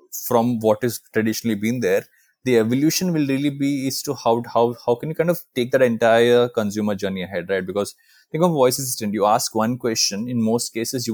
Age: 20-39